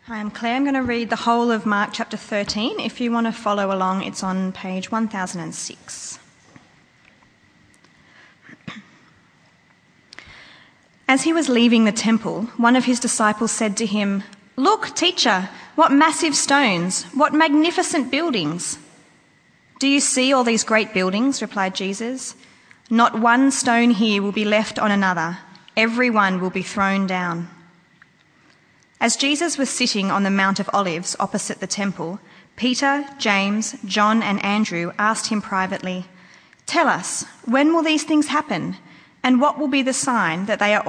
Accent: Australian